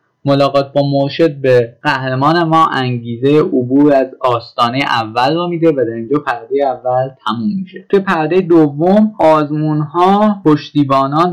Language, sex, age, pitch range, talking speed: Persian, male, 10-29, 130-165 Hz, 130 wpm